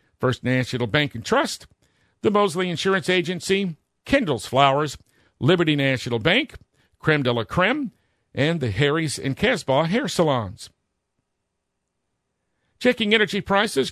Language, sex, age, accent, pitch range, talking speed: English, male, 50-69, American, 130-185 Hz, 120 wpm